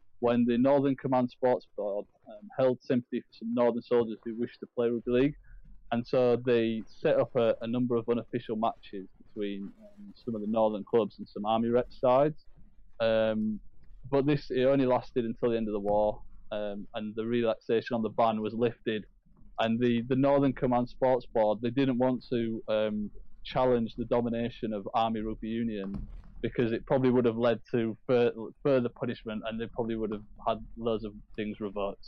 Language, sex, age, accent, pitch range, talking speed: English, male, 20-39, British, 110-125 Hz, 190 wpm